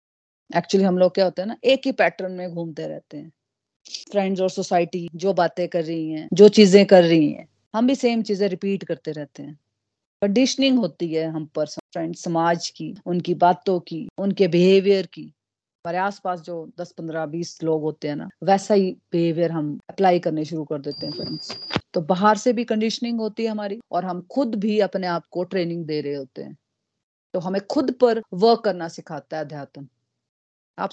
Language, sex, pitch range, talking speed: Hindi, female, 170-215 Hz, 195 wpm